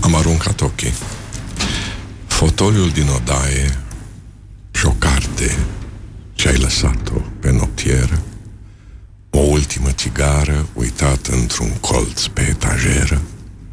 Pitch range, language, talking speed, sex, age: 80-110 Hz, Romanian, 85 wpm, male, 60-79